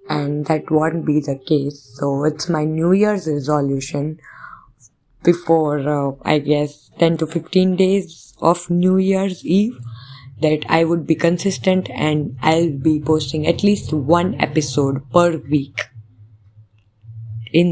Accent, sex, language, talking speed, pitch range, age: Indian, female, English, 135 wpm, 140-165 Hz, 20-39